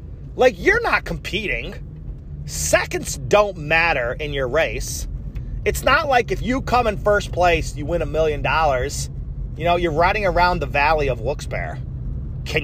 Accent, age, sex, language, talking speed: American, 30-49, male, English, 160 wpm